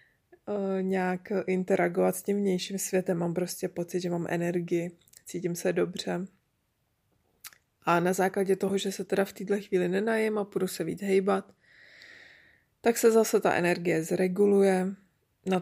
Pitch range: 175-195 Hz